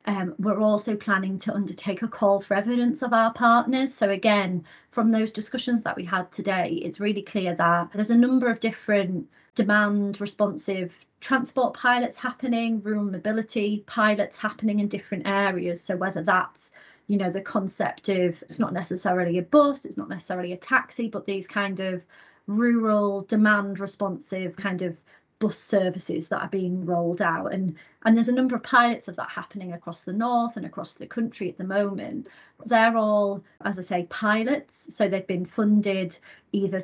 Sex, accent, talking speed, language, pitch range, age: female, British, 175 wpm, English, 190-230 Hz, 30-49